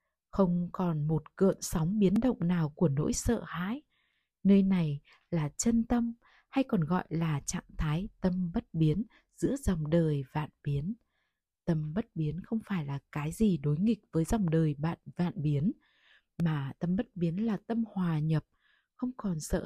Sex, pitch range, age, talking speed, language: female, 155-215 Hz, 20-39, 175 wpm, Vietnamese